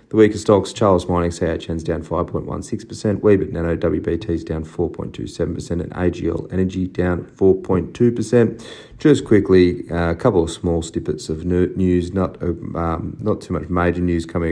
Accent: Australian